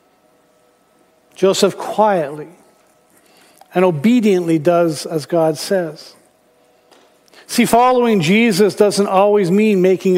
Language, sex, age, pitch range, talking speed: English, male, 50-69, 180-220 Hz, 90 wpm